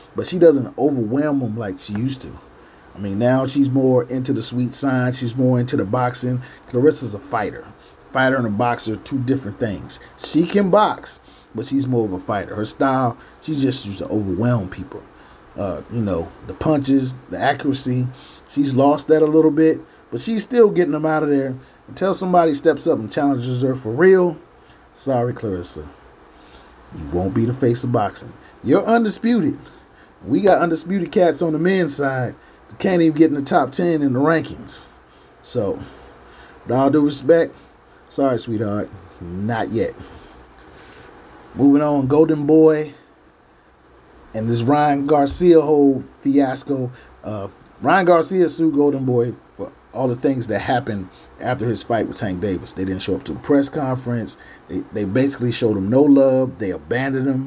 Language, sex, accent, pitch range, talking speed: English, male, American, 120-155 Hz, 175 wpm